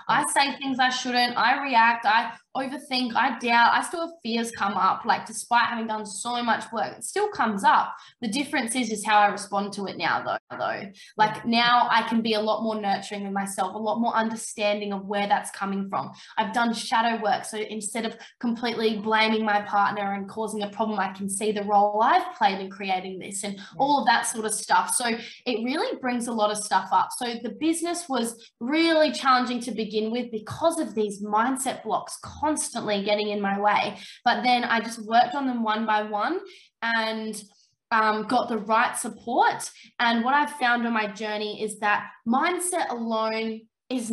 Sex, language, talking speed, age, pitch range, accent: female, English, 200 wpm, 10-29, 210-250 Hz, Australian